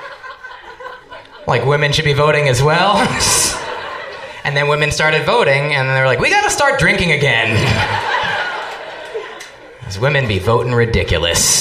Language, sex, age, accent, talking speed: English, male, 20-39, American, 140 wpm